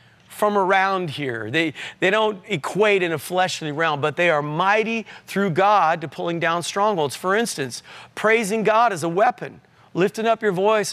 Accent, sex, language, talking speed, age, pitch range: American, male, English, 175 wpm, 40-59, 175-215 Hz